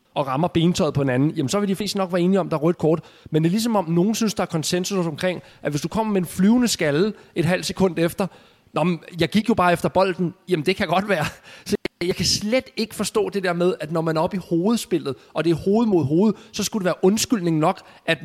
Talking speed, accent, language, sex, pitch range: 270 wpm, native, Danish, male, 130-175 Hz